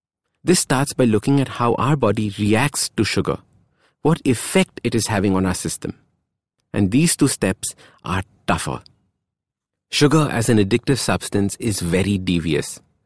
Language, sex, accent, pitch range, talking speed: English, male, Indian, 100-140 Hz, 150 wpm